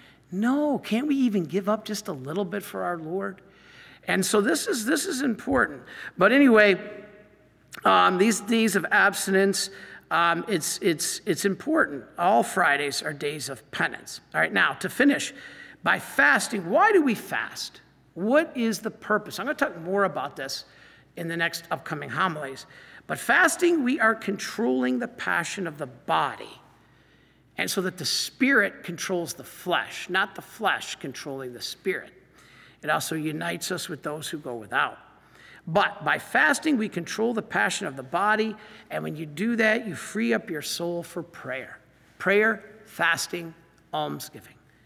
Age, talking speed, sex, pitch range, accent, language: 50-69, 165 wpm, male, 170-230 Hz, American, English